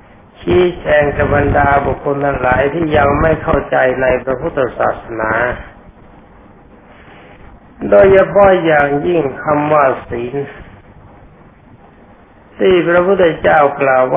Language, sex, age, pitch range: Thai, male, 60-79, 130-165 Hz